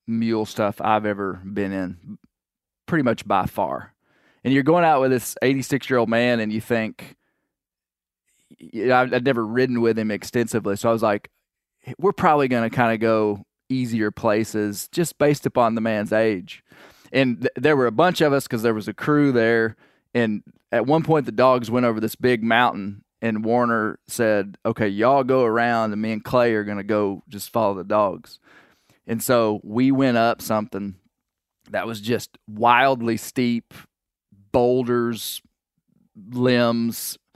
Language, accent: English, American